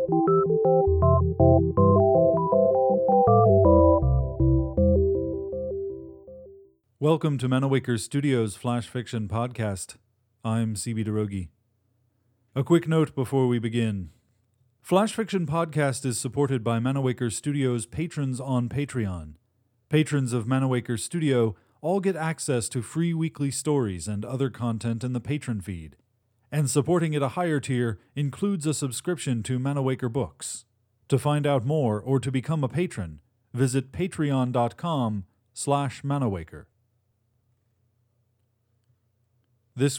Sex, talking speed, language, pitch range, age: male, 105 wpm, English, 110-135 Hz, 40-59